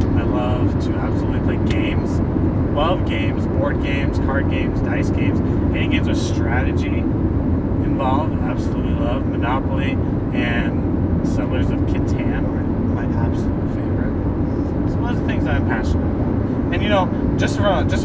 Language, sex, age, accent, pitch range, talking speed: English, male, 30-49, American, 90-100 Hz, 150 wpm